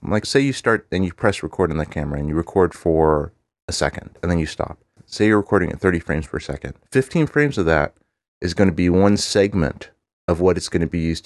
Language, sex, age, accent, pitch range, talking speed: English, male, 30-49, American, 80-100 Hz, 245 wpm